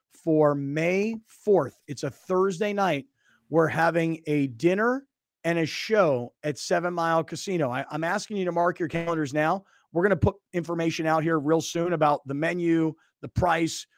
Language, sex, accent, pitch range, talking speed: English, male, American, 155-185 Hz, 175 wpm